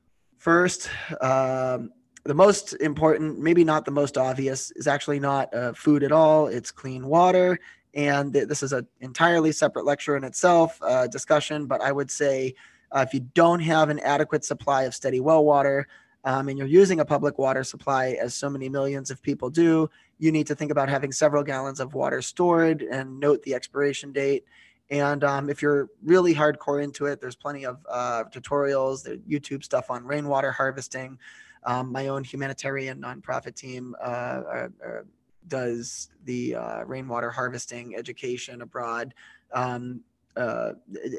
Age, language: 20-39, English